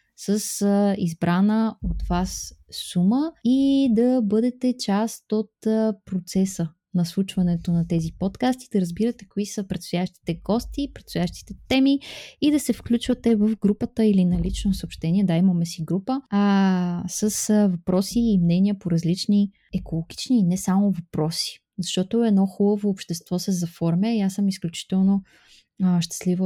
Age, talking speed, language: 20-39, 140 wpm, Bulgarian